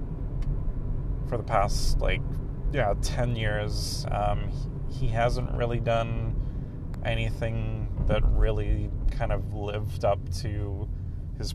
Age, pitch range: 30-49, 95-115 Hz